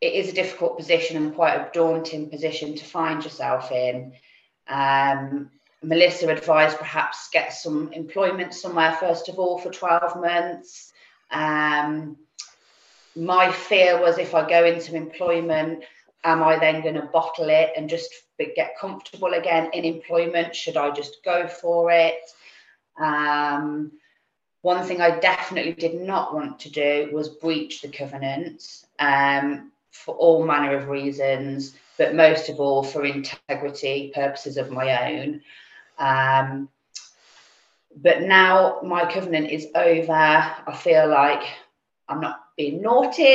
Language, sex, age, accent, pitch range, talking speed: English, female, 30-49, British, 150-175 Hz, 140 wpm